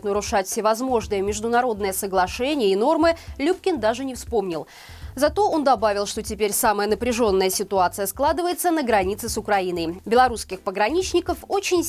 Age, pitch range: 20-39, 200-295 Hz